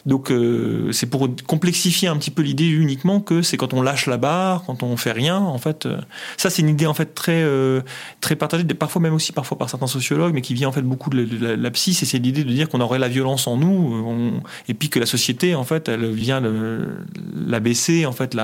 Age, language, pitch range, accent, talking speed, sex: 30-49, French, 125-170 Hz, French, 260 wpm, male